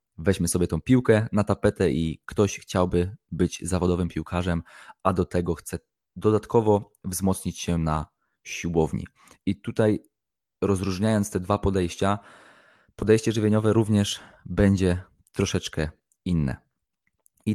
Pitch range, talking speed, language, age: 90-105 Hz, 115 wpm, Polish, 20-39